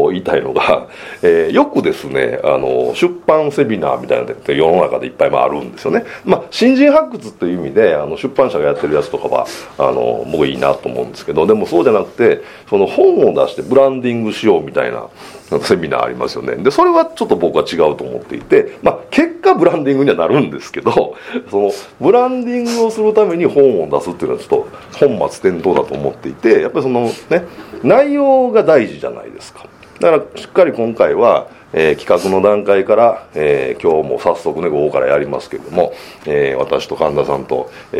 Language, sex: Japanese, male